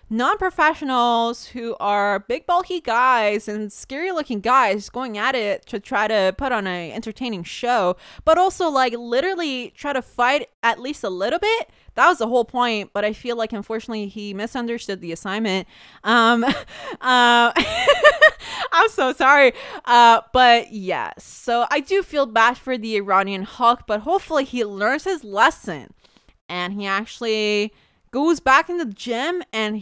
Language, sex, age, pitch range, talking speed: English, female, 20-39, 220-310 Hz, 160 wpm